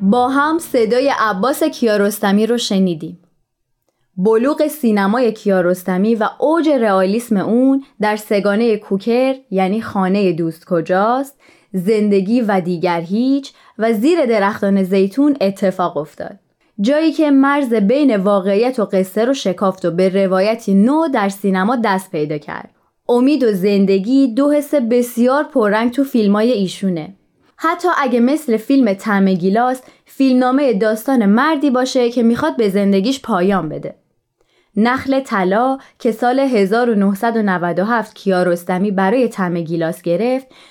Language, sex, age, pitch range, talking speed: Persian, female, 20-39, 195-255 Hz, 125 wpm